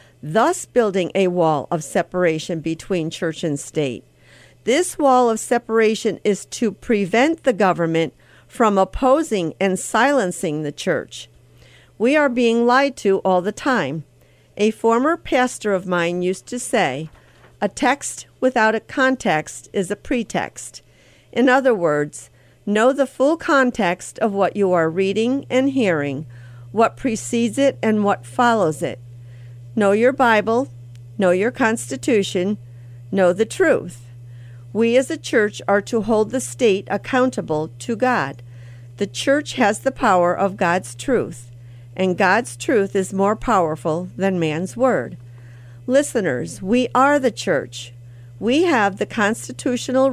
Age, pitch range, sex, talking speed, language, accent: 50-69, 155-245 Hz, female, 140 wpm, English, American